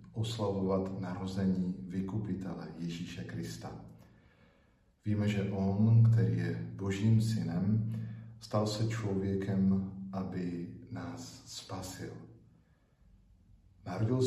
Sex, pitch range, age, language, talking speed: male, 90-110 Hz, 50-69, Slovak, 80 wpm